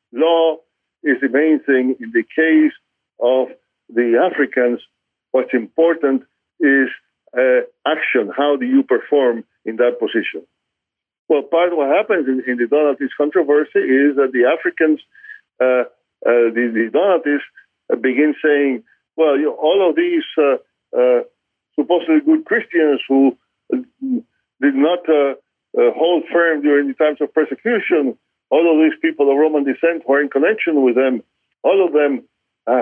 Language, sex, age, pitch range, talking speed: English, male, 50-69, 130-165 Hz, 155 wpm